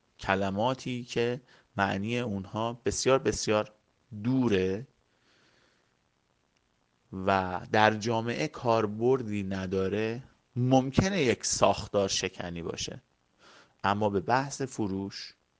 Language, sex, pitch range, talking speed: Persian, male, 100-125 Hz, 80 wpm